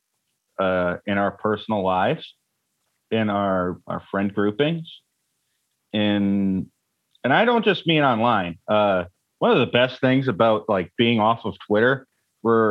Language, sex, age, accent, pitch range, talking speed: English, male, 30-49, American, 100-140 Hz, 140 wpm